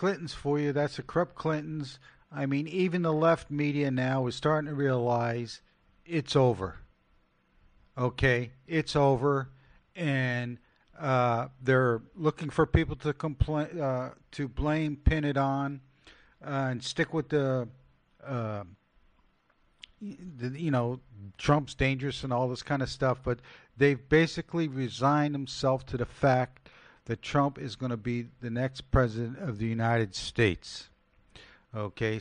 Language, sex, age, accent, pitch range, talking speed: English, male, 50-69, American, 120-145 Hz, 140 wpm